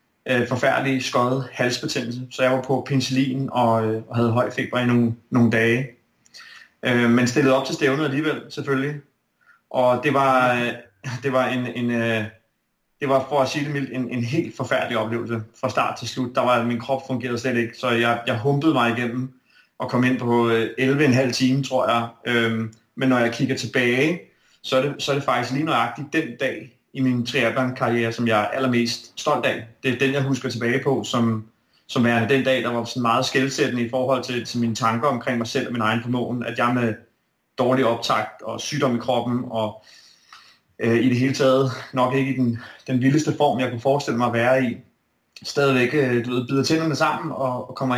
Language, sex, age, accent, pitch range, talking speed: Danish, male, 30-49, native, 120-135 Hz, 185 wpm